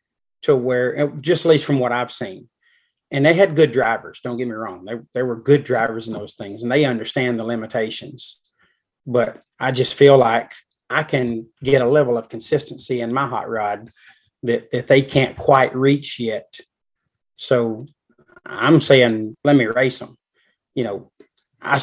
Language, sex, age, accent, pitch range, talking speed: English, male, 30-49, American, 120-145 Hz, 175 wpm